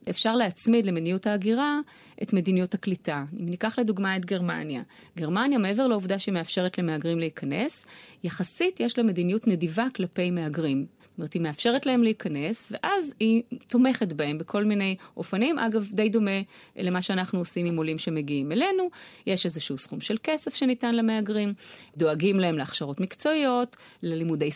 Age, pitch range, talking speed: 30-49, 175-235 Hz, 145 wpm